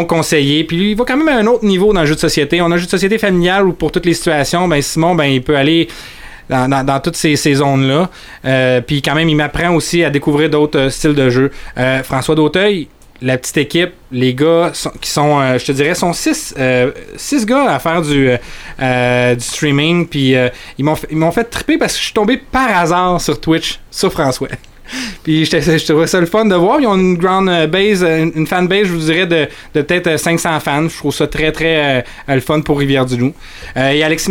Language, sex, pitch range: French, male, 140-175 Hz